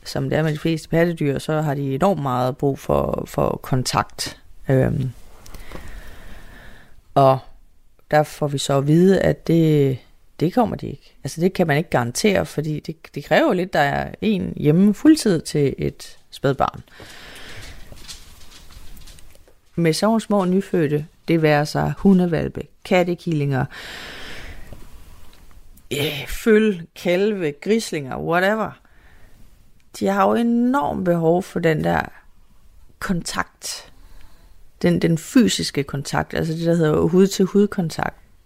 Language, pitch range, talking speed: Danish, 140-195 Hz, 125 wpm